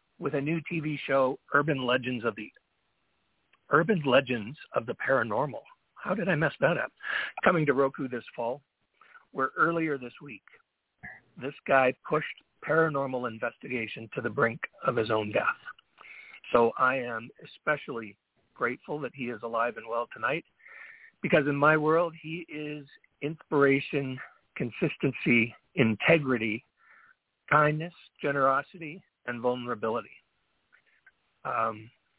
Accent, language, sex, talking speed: American, English, male, 125 wpm